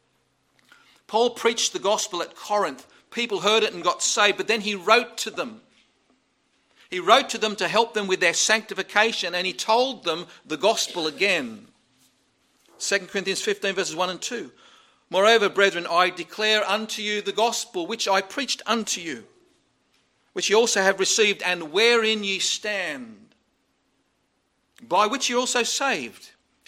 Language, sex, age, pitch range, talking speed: English, male, 50-69, 175-230 Hz, 155 wpm